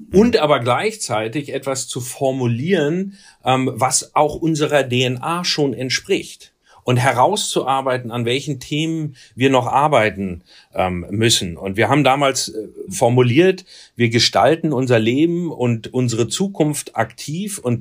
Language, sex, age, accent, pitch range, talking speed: German, male, 40-59, German, 120-155 Hz, 120 wpm